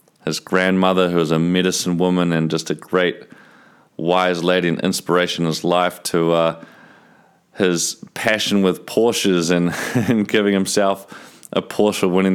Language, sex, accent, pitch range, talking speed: English, male, Australian, 85-95 Hz, 155 wpm